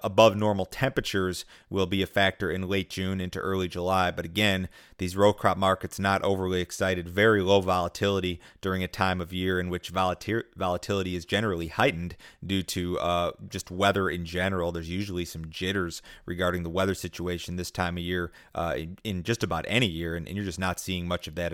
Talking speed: 200 wpm